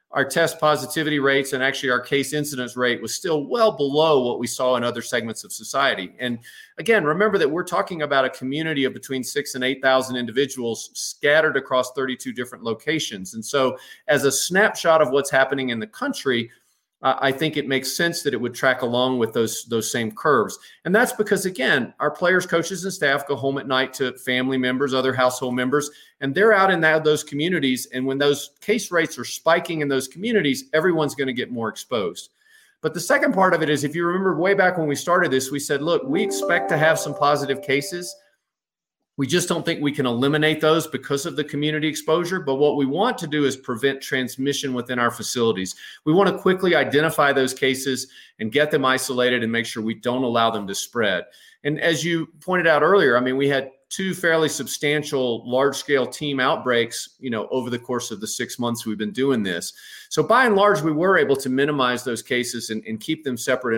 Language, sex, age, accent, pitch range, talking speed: English, male, 40-59, American, 125-160 Hz, 215 wpm